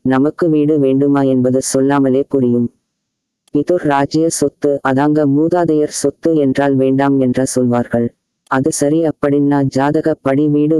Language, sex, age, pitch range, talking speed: Tamil, female, 20-39, 135-150 Hz, 115 wpm